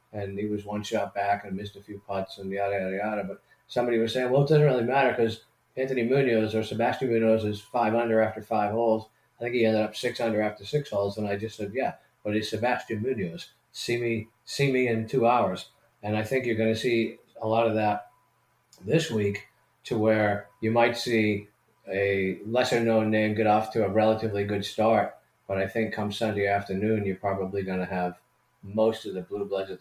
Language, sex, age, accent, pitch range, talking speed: English, male, 40-59, American, 105-120 Hz, 215 wpm